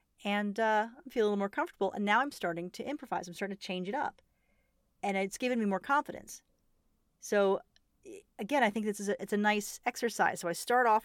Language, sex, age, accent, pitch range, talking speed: English, female, 40-59, American, 180-230 Hz, 215 wpm